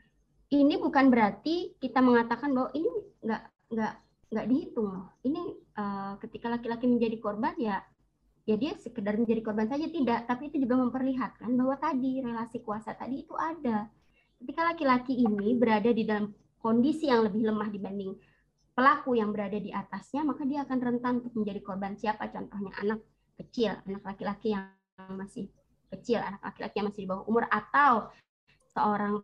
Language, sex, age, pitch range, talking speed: Indonesian, male, 20-39, 205-255 Hz, 160 wpm